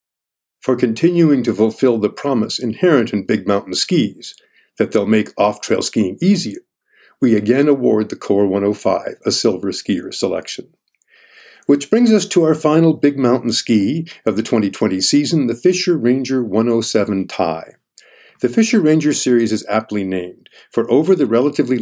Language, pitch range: English, 110-145 Hz